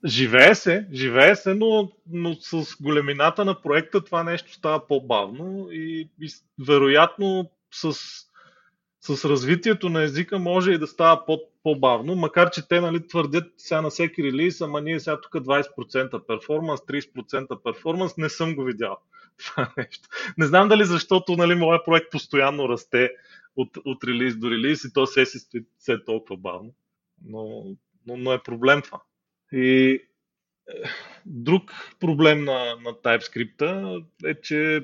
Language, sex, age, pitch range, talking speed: Bulgarian, male, 30-49, 135-170 Hz, 150 wpm